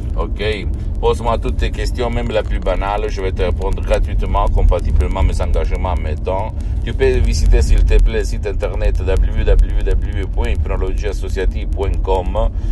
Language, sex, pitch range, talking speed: Italian, male, 80-105 Hz, 130 wpm